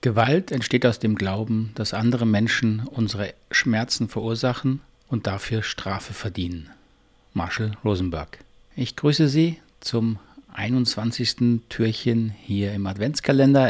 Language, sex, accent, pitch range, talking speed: German, male, German, 100-120 Hz, 115 wpm